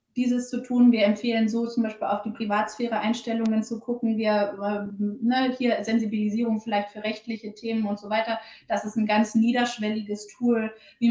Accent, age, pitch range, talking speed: German, 30-49, 215-245 Hz, 175 wpm